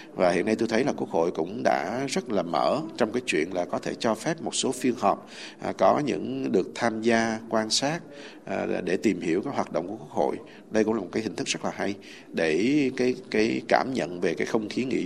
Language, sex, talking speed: Vietnamese, male, 250 wpm